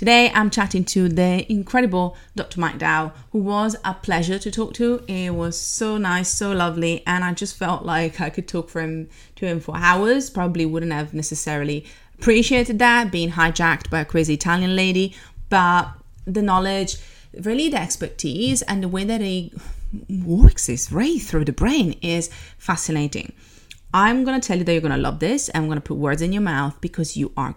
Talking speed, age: 195 wpm, 30-49